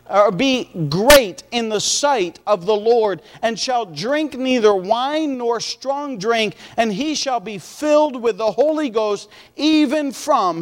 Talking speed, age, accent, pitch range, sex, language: 160 wpm, 40-59, American, 140-235 Hz, male, English